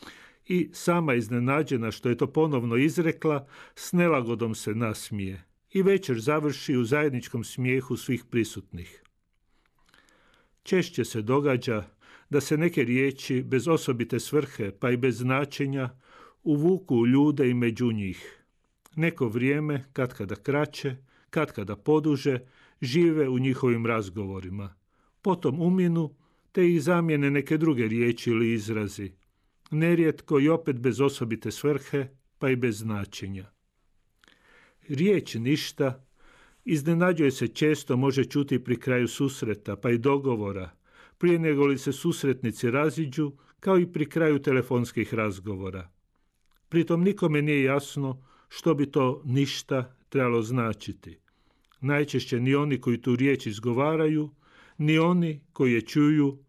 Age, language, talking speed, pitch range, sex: 50-69, Croatian, 125 wpm, 115-150 Hz, male